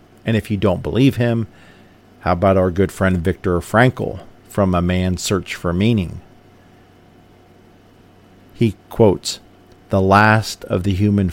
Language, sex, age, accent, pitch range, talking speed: English, male, 50-69, American, 90-100 Hz, 140 wpm